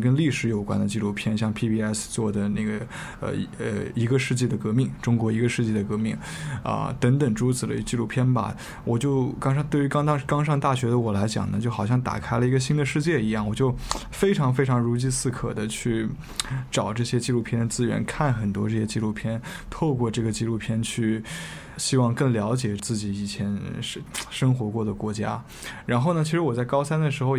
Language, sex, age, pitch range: Chinese, male, 20-39, 110-130 Hz